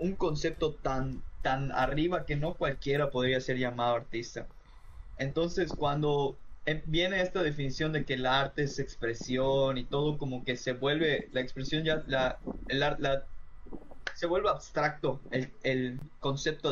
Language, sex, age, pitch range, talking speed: Spanish, male, 20-39, 130-160 Hz, 155 wpm